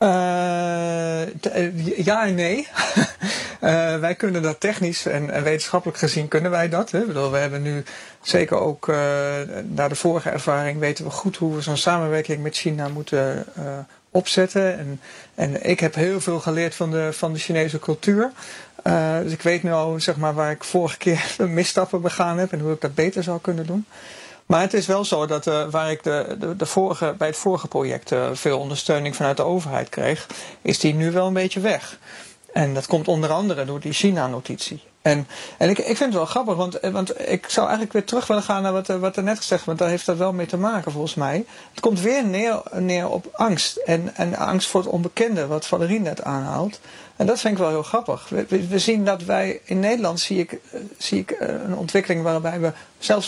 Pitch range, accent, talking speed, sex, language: 160-200 Hz, Dutch, 210 wpm, male, Dutch